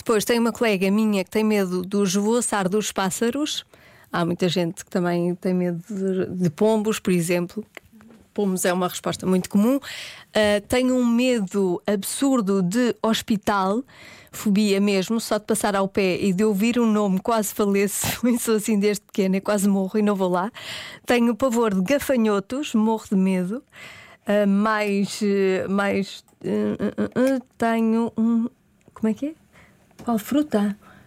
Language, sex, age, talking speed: Portuguese, female, 20-39, 160 wpm